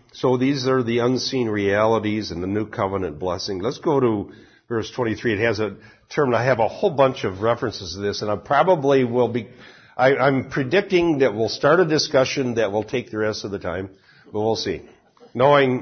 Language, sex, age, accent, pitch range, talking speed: English, male, 60-79, American, 105-135 Hz, 200 wpm